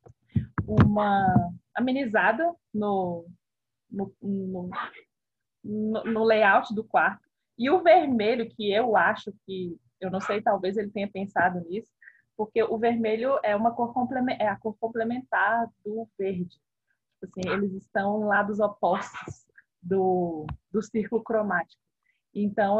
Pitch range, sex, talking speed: 190-230 Hz, female, 130 wpm